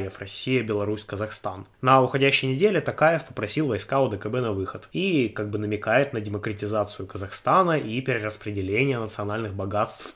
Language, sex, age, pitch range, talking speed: Russian, male, 20-39, 105-135 Hz, 140 wpm